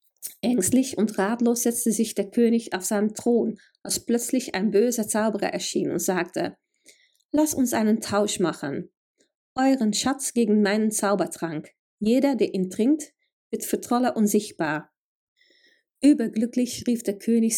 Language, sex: German, female